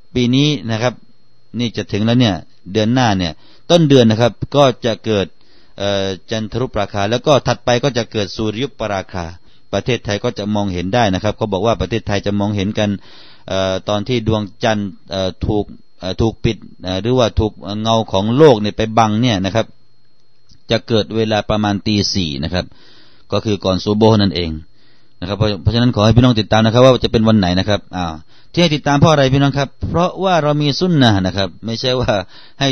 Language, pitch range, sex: Thai, 95-120 Hz, male